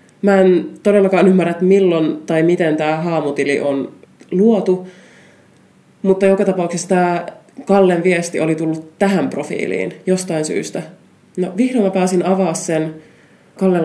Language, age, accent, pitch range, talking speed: Finnish, 20-39, native, 165-200 Hz, 135 wpm